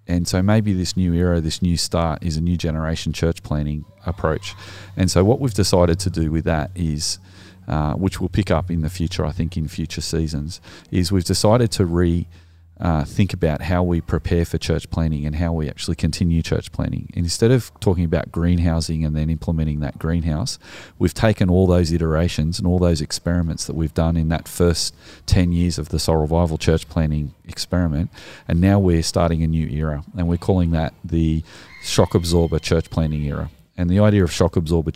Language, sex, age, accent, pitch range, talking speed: English, male, 30-49, Australian, 80-95 Hz, 200 wpm